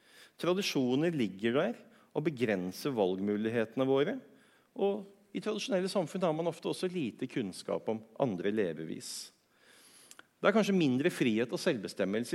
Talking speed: 130 wpm